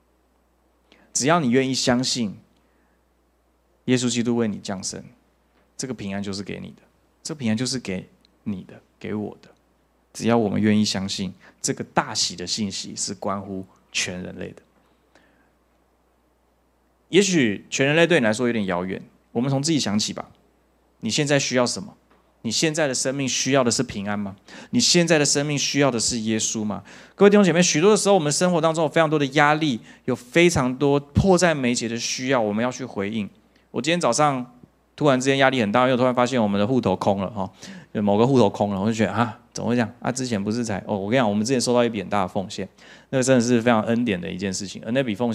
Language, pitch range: Chinese, 105-150 Hz